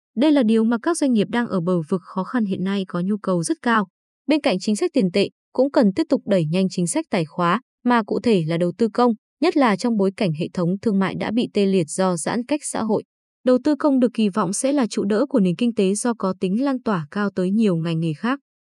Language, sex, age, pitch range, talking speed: Vietnamese, female, 20-39, 190-245 Hz, 275 wpm